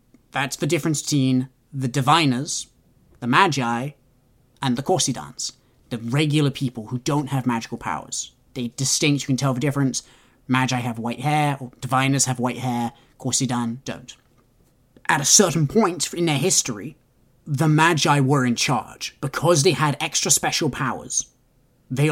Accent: British